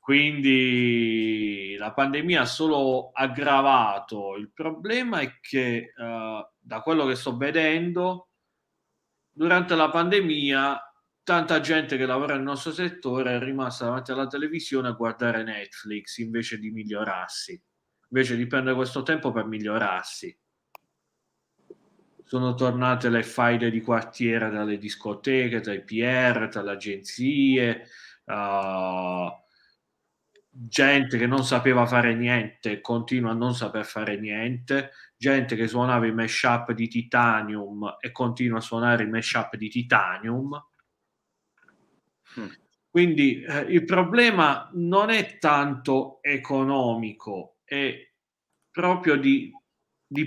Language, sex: Italian, male